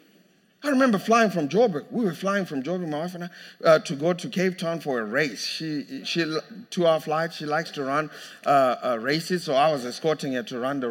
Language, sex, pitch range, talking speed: English, male, 135-170 Hz, 230 wpm